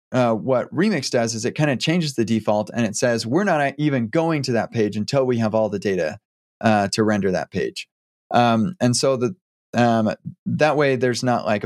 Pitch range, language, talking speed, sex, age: 105-130 Hz, English, 215 wpm, male, 20-39